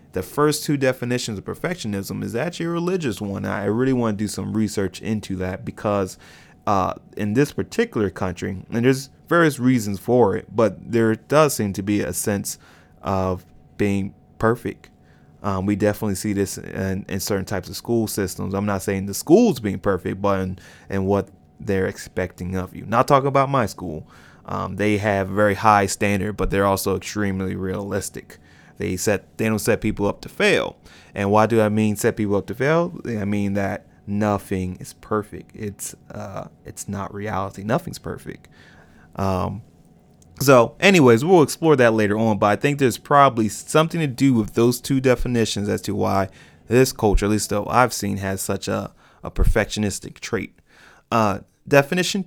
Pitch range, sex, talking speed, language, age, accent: 95-120 Hz, male, 180 wpm, English, 20-39, American